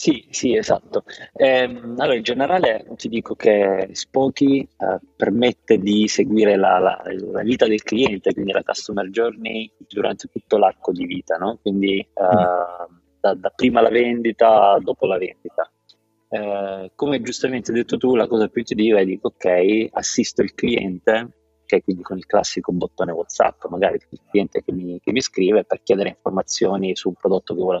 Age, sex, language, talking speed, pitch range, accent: 30-49, male, Italian, 185 wpm, 90-115 Hz, native